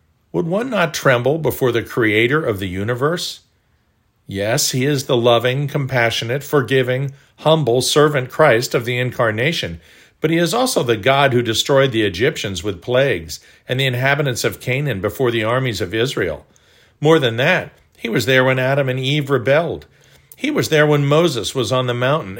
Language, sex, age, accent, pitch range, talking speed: English, male, 50-69, American, 115-145 Hz, 175 wpm